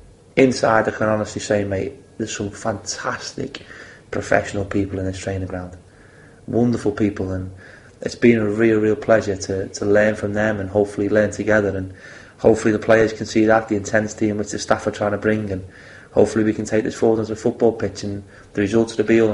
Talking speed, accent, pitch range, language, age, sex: 210 wpm, British, 100-110 Hz, English, 30-49, male